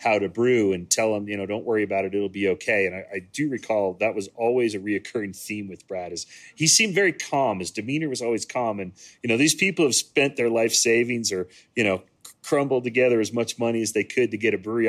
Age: 30-49